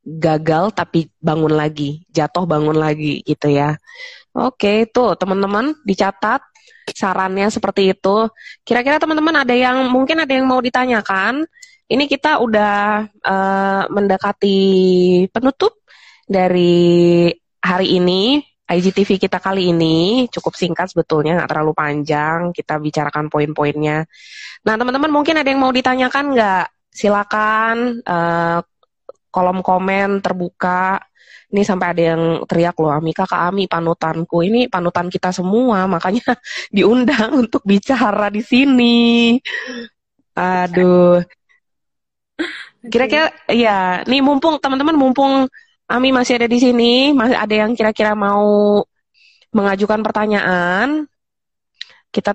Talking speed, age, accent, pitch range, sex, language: 115 wpm, 20-39, native, 175-250 Hz, female, Indonesian